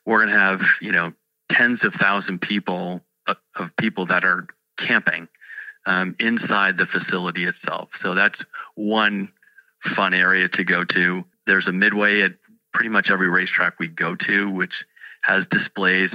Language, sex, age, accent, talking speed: English, male, 40-59, American, 155 wpm